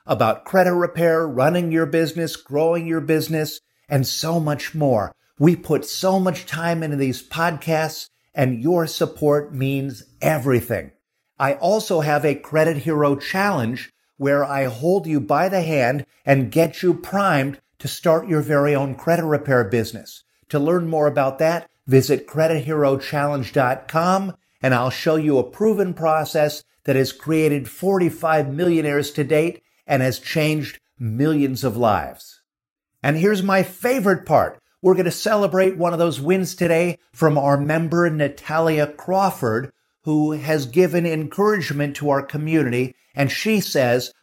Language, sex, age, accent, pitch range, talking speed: English, male, 50-69, American, 140-170 Hz, 145 wpm